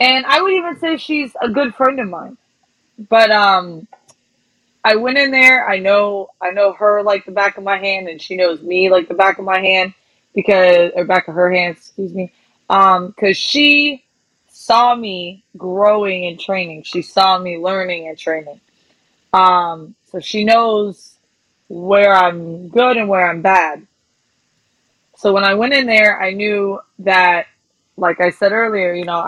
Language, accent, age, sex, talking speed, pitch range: English, American, 20-39, female, 175 wpm, 180-215 Hz